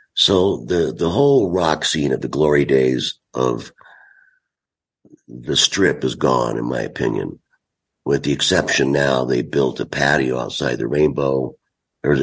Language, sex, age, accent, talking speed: English, male, 60-79, American, 145 wpm